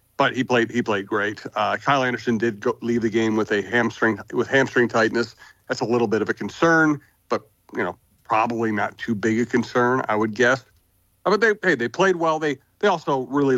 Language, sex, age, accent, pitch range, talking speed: English, male, 40-59, American, 110-130 Hz, 215 wpm